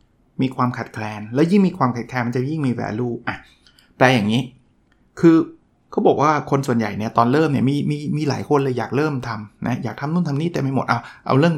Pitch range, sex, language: 120-160 Hz, male, Thai